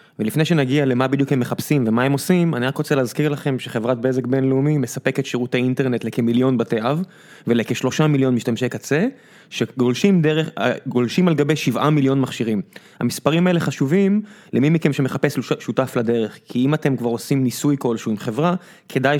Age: 20-39